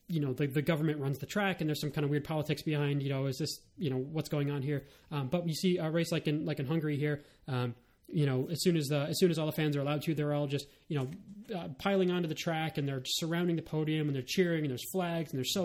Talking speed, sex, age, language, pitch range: 300 wpm, male, 20-39, English, 140-175 Hz